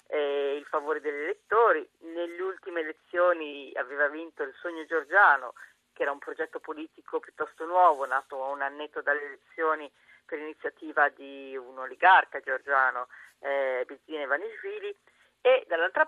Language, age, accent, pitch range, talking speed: Italian, 40-59, native, 145-185 Hz, 140 wpm